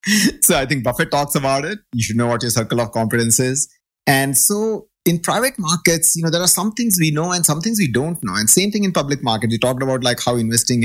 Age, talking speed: 30-49, 260 wpm